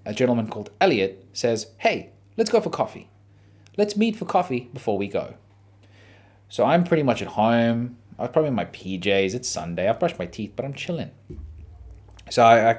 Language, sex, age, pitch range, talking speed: English, male, 30-49, 95-120 Hz, 190 wpm